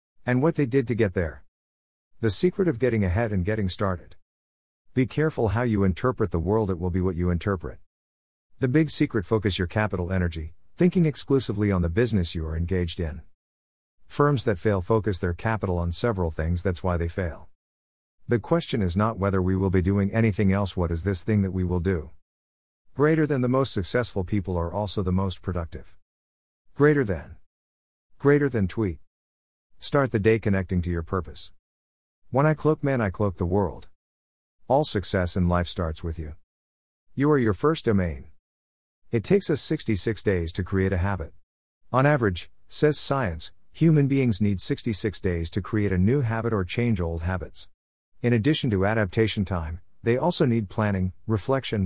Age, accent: 50-69, American